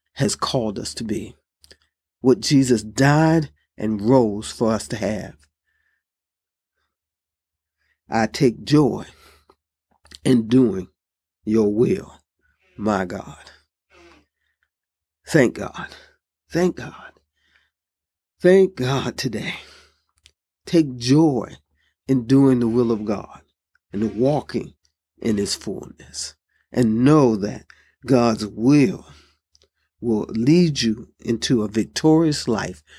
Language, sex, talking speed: English, male, 100 wpm